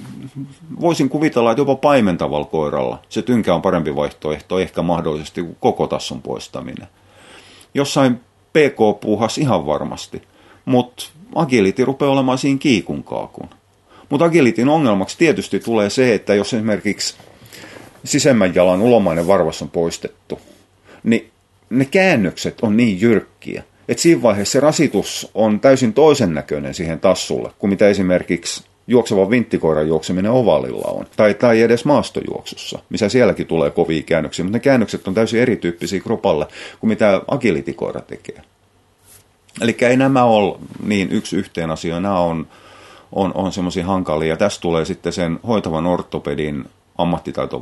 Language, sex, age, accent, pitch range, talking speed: Finnish, male, 30-49, native, 85-120 Hz, 135 wpm